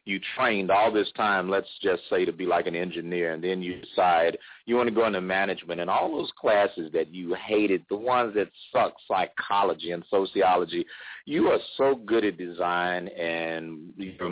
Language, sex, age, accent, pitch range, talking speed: English, male, 40-59, American, 80-110 Hz, 190 wpm